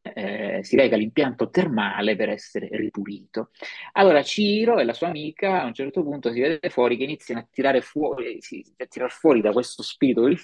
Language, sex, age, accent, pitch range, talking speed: Italian, male, 30-49, native, 110-160 Hz, 180 wpm